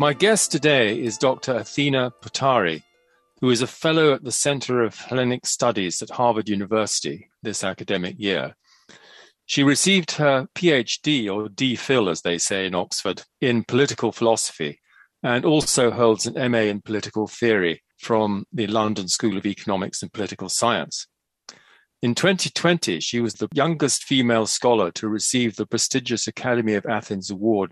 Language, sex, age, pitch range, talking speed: English, male, 40-59, 105-135 Hz, 150 wpm